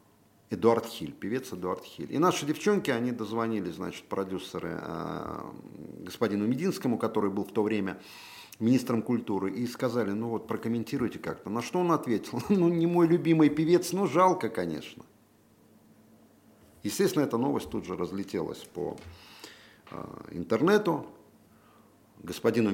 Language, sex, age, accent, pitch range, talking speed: Russian, male, 50-69, native, 105-165 Hz, 125 wpm